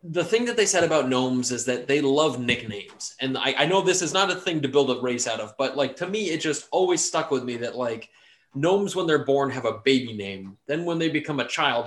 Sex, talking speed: male, 270 wpm